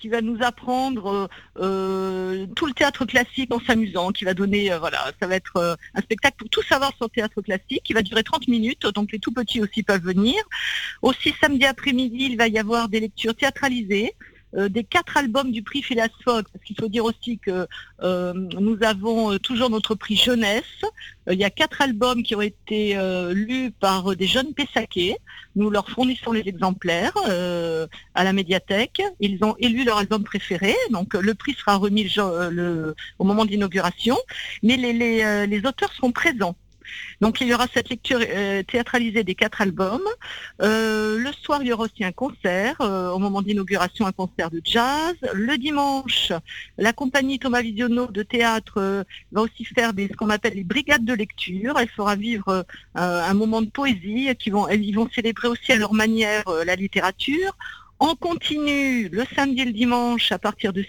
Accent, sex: French, female